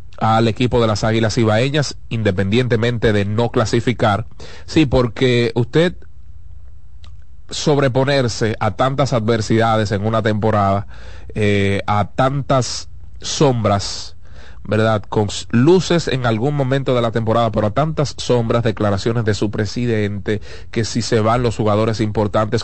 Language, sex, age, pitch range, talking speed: Spanish, male, 30-49, 105-125 Hz, 125 wpm